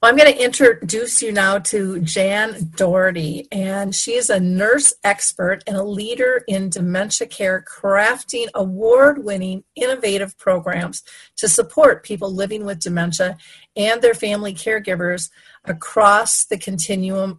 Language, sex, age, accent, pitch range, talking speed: English, female, 40-59, American, 190-235 Hz, 130 wpm